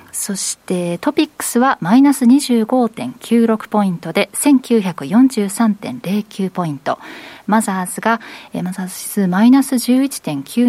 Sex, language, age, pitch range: female, Japanese, 40-59, 185-245 Hz